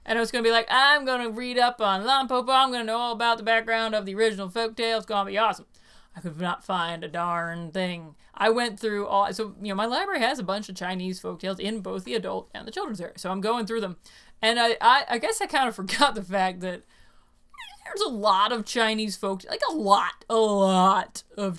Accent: American